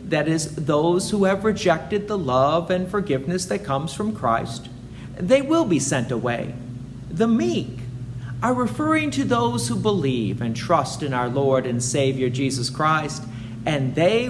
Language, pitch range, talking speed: English, 125-200 Hz, 160 wpm